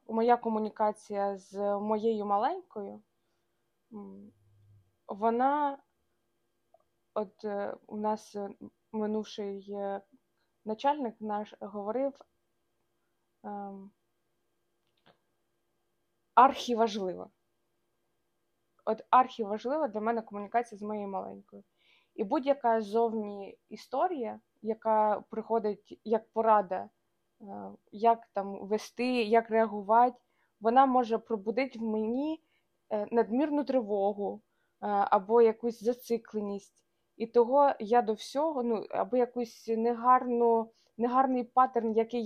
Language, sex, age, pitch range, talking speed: Ukrainian, female, 20-39, 205-240 Hz, 80 wpm